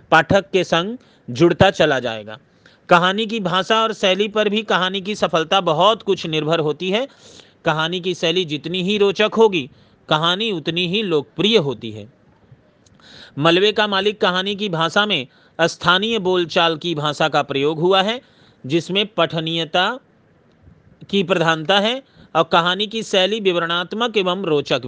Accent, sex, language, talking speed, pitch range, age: native, male, Hindi, 145 wpm, 160-205 Hz, 40-59